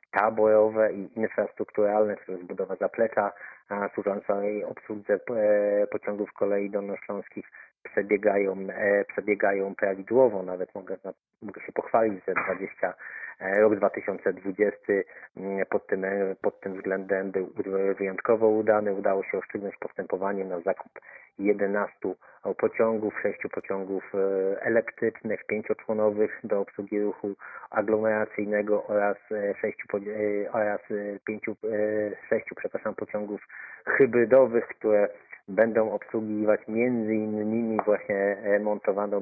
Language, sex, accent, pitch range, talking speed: Polish, male, native, 95-105 Hz, 100 wpm